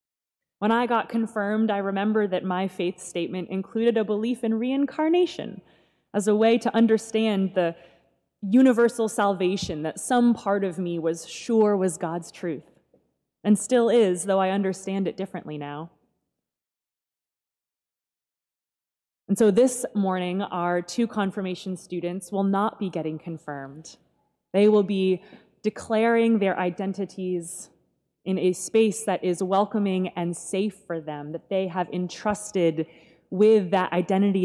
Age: 20-39